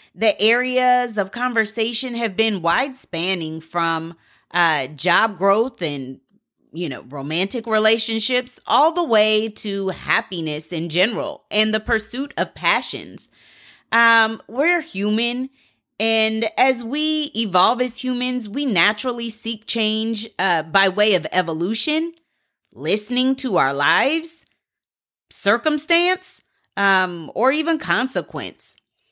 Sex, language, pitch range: female, English, 200-275 Hz